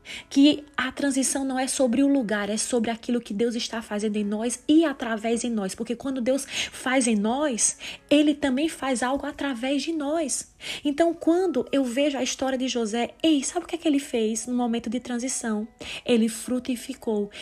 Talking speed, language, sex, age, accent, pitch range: 195 wpm, Portuguese, female, 20-39, Brazilian, 215-260 Hz